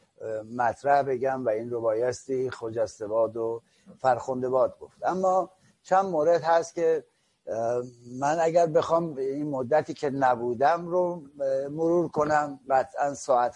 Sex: male